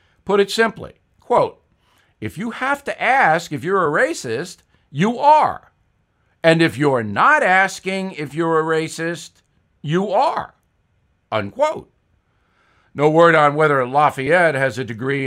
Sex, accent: male, American